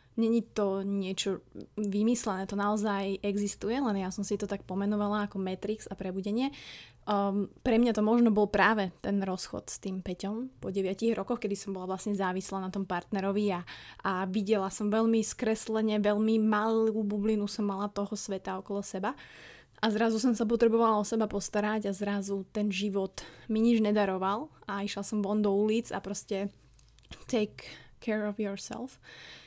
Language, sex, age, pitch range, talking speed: Slovak, female, 20-39, 200-225 Hz, 170 wpm